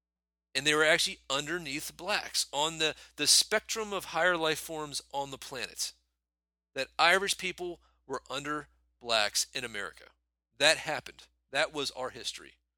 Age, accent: 40-59, American